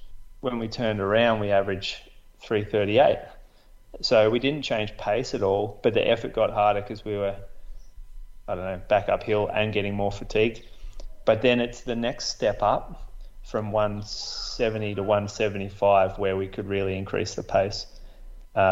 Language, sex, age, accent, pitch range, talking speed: English, male, 30-49, Australian, 100-115 Hz, 160 wpm